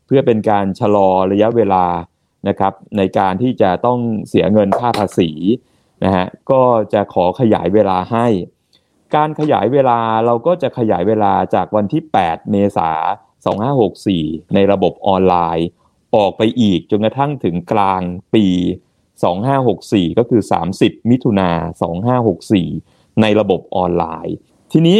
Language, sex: Thai, male